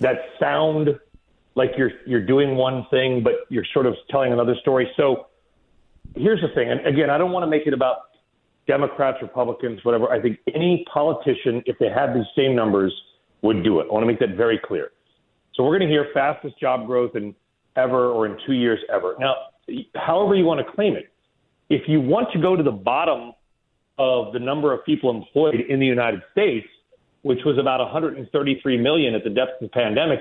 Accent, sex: American, male